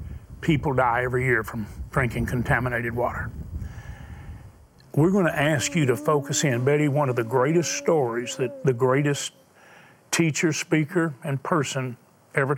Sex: male